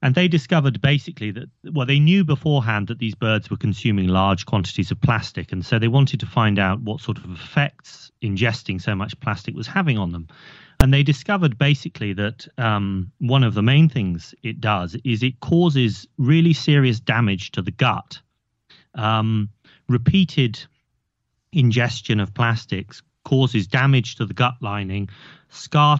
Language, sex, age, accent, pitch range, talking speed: English, male, 30-49, British, 105-135 Hz, 165 wpm